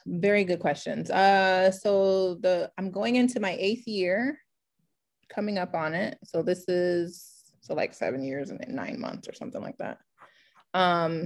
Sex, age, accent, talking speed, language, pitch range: female, 30-49, American, 165 wpm, English, 165-205 Hz